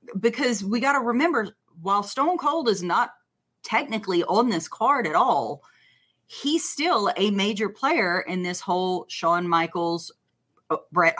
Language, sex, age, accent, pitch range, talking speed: English, female, 30-49, American, 180-230 Hz, 145 wpm